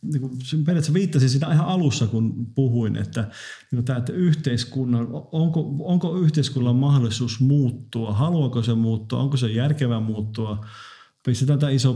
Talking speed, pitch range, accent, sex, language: 125 wpm, 115-145 Hz, native, male, Finnish